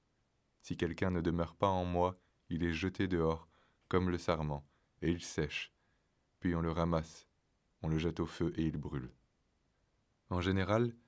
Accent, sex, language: French, male, French